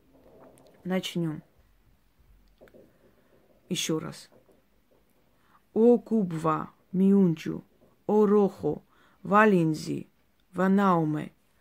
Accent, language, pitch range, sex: native, Russian, 165-210 Hz, female